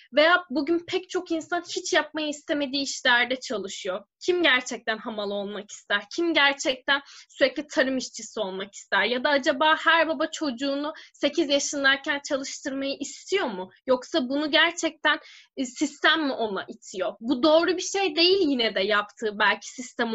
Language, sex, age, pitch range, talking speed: Turkish, female, 10-29, 255-315 Hz, 150 wpm